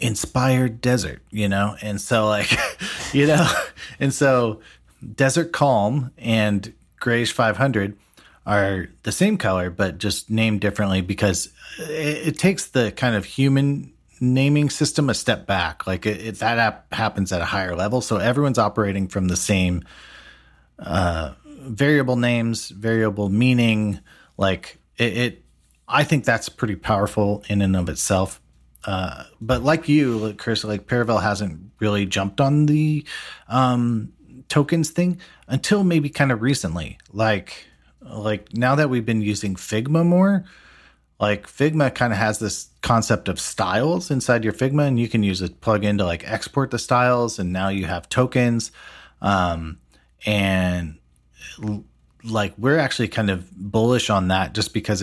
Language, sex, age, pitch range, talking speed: English, male, 40-59, 95-130 Hz, 150 wpm